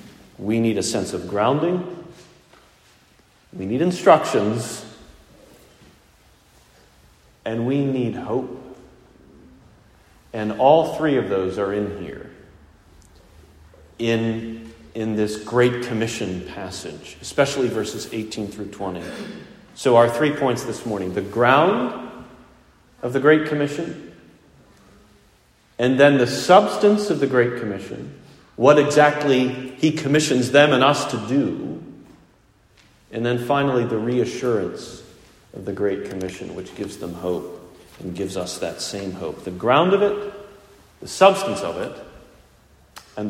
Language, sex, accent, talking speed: English, male, American, 125 wpm